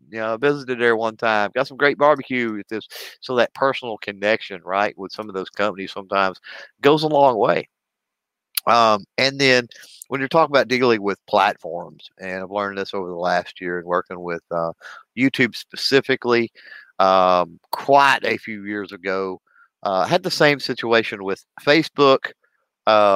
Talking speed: 170 wpm